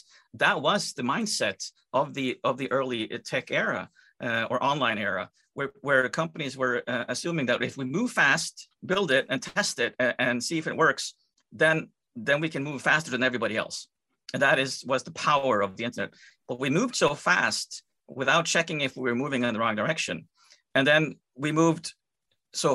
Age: 50-69